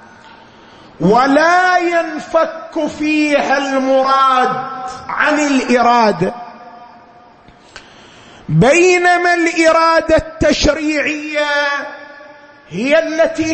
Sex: male